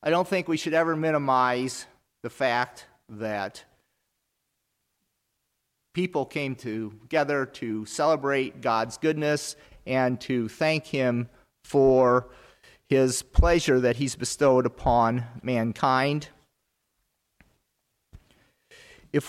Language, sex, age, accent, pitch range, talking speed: English, male, 40-59, American, 120-145 Hz, 95 wpm